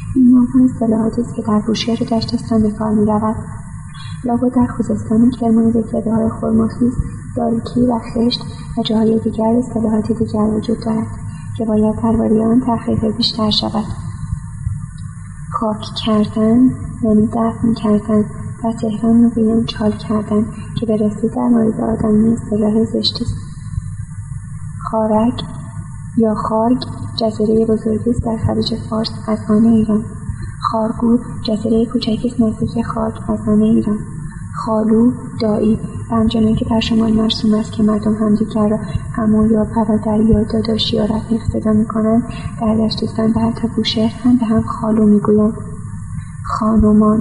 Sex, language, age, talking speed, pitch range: female, English, 30-49, 130 wpm, 215-230 Hz